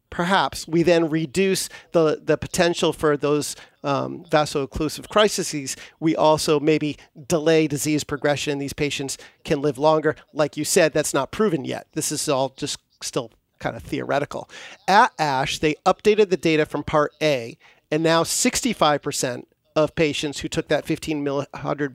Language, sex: English, male